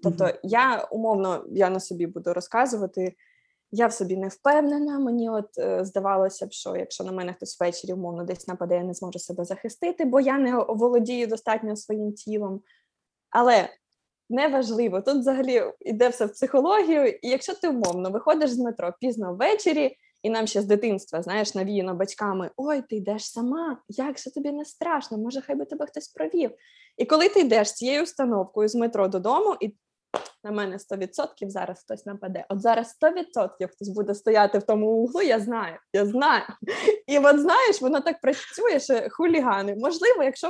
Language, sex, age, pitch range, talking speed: Ukrainian, female, 20-39, 200-295 Hz, 175 wpm